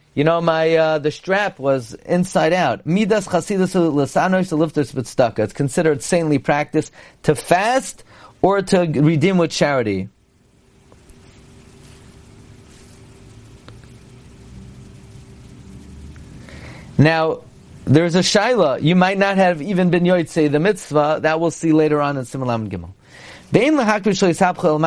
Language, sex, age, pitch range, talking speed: English, male, 40-59, 140-180 Hz, 120 wpm